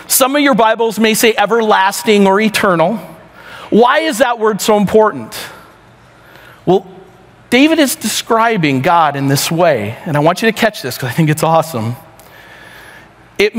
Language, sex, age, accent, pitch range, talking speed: English, male, 40-59, American, 180-235 Hz, 160 wpm